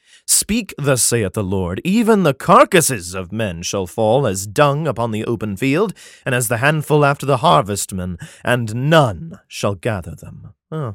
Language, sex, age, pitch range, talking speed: English, male, 30-49, 125-195 Hz, 170 wpm